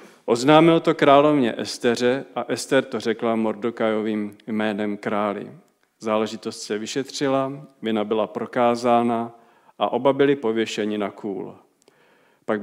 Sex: male